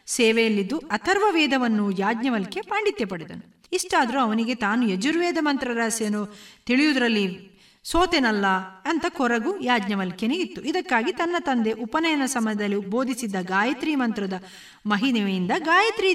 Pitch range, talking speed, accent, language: 215-320 Hz, 95 wpm, native, Kannada